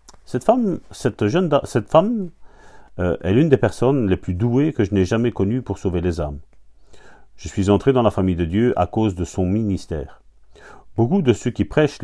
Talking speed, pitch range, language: 210 wpm, 85-105 Hz, French